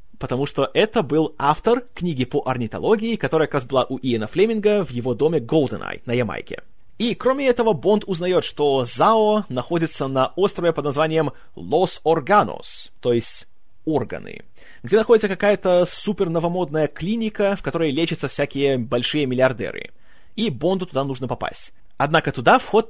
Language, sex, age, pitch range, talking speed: Russian, male, 30-49, 135-200 Hz, 150 wpm